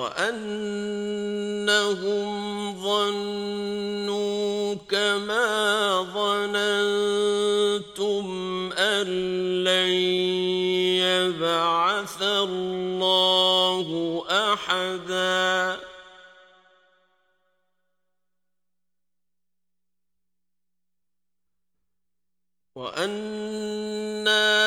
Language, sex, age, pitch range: Arabic, male, 50-69, 185-210 Hz